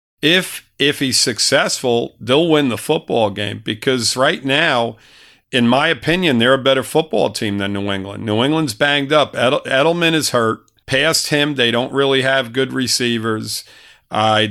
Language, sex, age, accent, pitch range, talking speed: English, male, 50-69, American, 115-135 Hz, 165 wpm